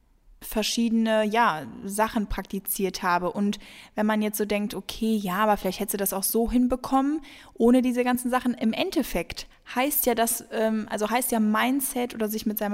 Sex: female